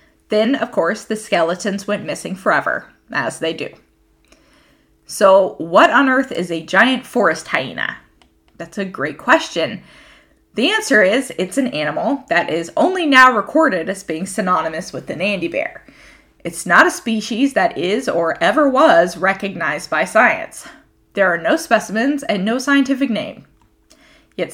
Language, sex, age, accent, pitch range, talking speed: English, female, 20-39, American, 180-265 Hz, 155 wpm